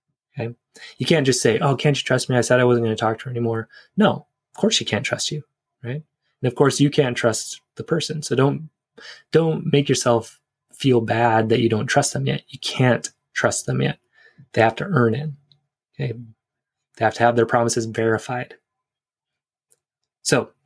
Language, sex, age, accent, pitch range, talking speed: English, male, 20-39, American, 115-140 Hz, 200 wpm